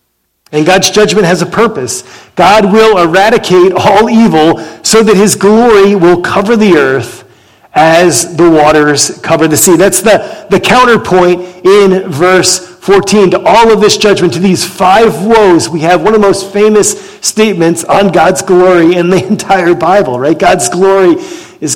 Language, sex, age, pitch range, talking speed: English, male, 40-59, 165-210 Hz, 165 wpm